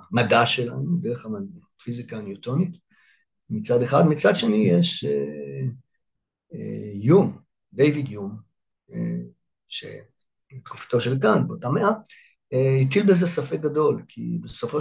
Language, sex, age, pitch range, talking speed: Hebrew, male, 60-79, 120-150 Hz, 120 wpm